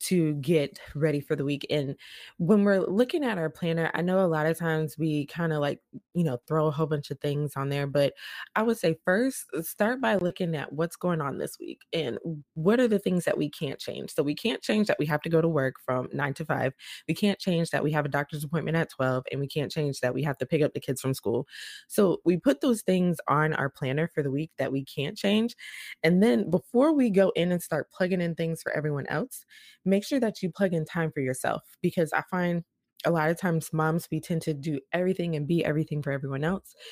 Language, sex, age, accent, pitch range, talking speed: English, female, 20-39, American, 145-180 Hz, 250 wpm